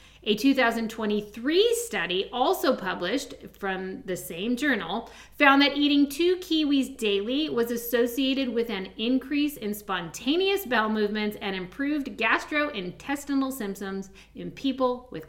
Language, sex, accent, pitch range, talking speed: English, female, American, 205-275 Hz, 120 wpm